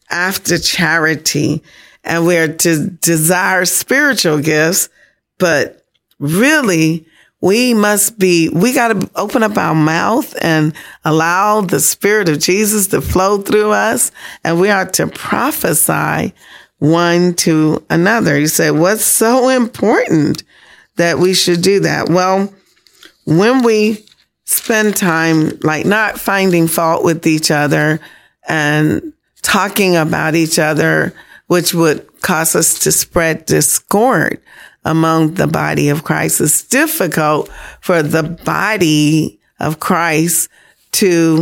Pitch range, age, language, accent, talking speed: 155-205 Hz, 40-59, English, American, 125 wpm